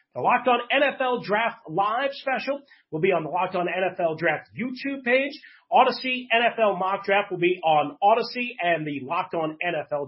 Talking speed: 180 wpm